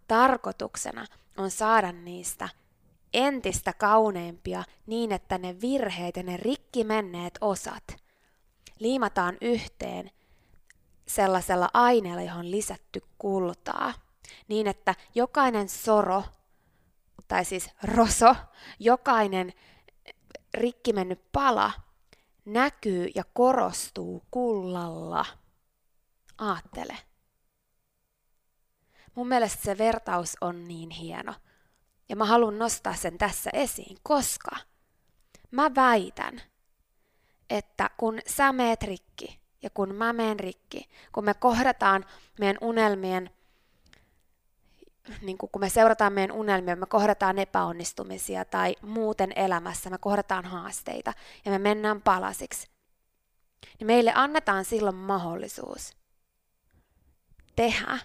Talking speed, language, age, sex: 95 wpm, Finnish, 20-39, female